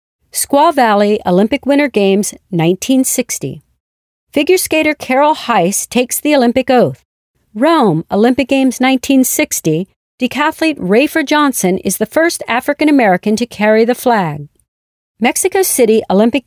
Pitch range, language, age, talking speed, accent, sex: 205-285 Hz, English, 50-69, 120 wpm, American, female